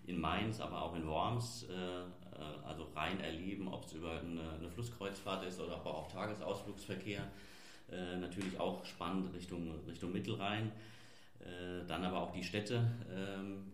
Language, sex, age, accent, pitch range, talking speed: German, male, 40-59, German, 85-100 Hz, 150 wpm